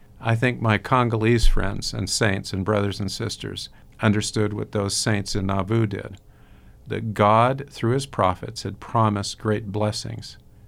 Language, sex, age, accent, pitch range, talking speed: English, male, 50-69, American, 100-115 Hz, 150 wpm